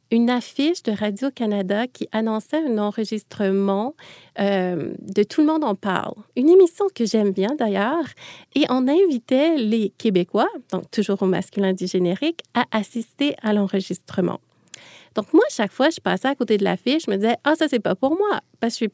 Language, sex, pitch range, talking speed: French, female, 195-245 Hz, 195 wpm